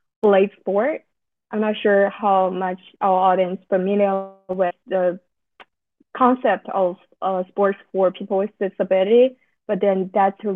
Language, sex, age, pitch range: English, female, 20-39, 185-205 Hz